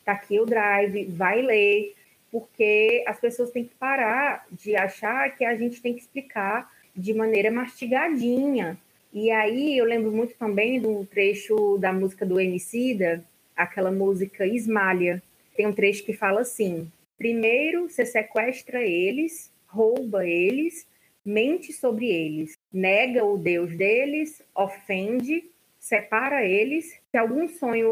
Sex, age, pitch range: female, 20-39, 195-245 Hz